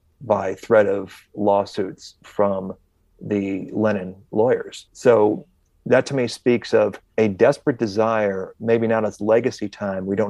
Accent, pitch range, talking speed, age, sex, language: American, 100-120 Hz, 140 wpm, 30-49, male, English